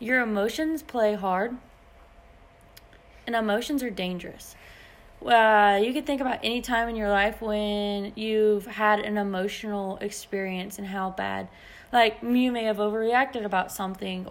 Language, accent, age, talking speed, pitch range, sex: English, American, 20-39, 145 wpm, 195-225 Hz, female